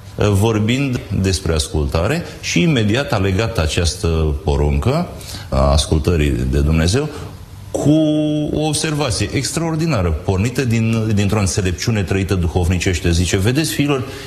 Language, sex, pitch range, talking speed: Romanian, male, 85-115 Hz, 110 wpm